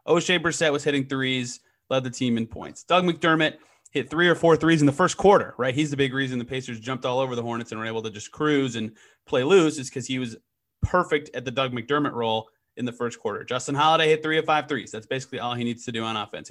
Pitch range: 125-165 Hz